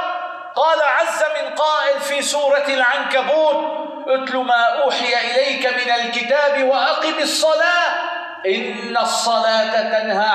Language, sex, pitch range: Arabic, male, 185-305 Hz